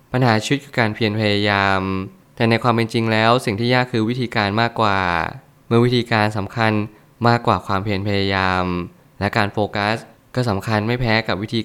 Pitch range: 105-125 Hz